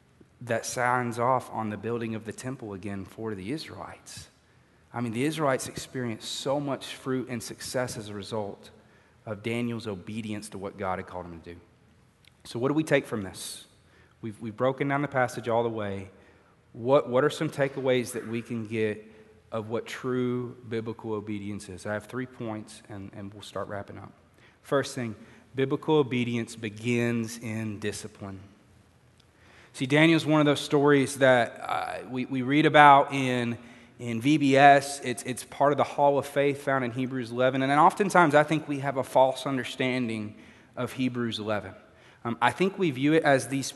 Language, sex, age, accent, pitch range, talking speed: English, male, 30-49, American, 110-145 Hz, 180 wpm